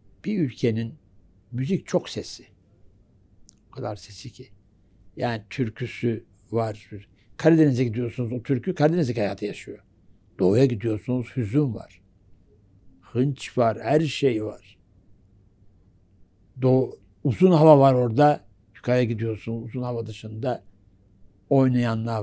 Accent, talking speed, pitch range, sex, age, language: native, 105 wpm, 100-125 Hz, male, 60-79, Turkish